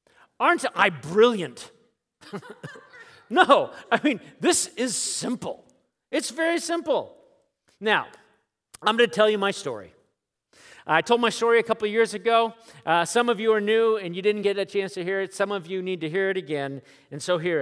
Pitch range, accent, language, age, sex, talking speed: 160-230 Hz, American, English, 40-59, male, 185 wpm